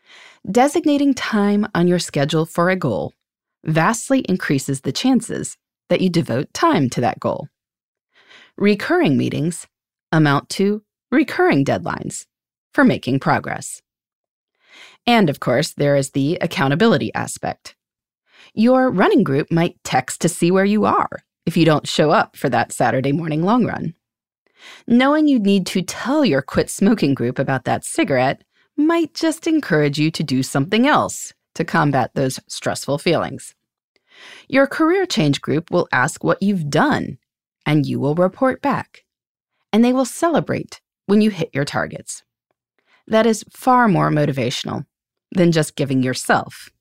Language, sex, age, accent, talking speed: English, female, 30-49, American, 145 wpm